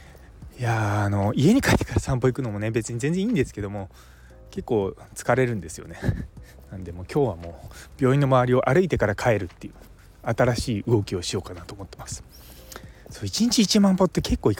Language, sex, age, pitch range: Japanese, male, 20-39, 95-150 Hz